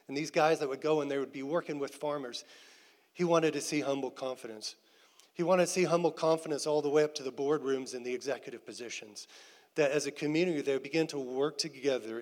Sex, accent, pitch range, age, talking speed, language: male, American, 145-180 Hz, 40-59, 225 wpm, English